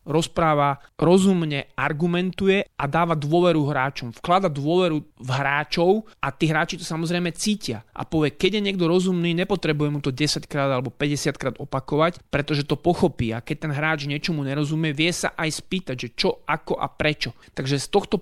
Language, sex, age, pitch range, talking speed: Slovak, male, 30-49, 140-180 Hz, 180 wpm